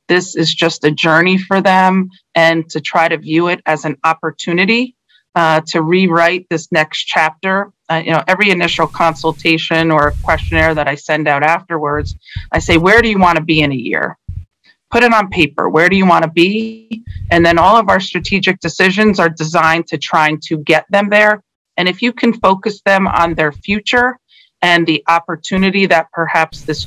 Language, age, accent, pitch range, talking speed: English, 40-59, American, 160-185 Hz, 190 wpm